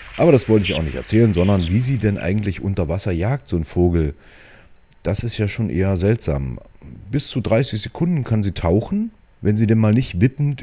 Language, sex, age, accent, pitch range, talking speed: German, male, 40-59, German, 90-115 Hz, 210 wpm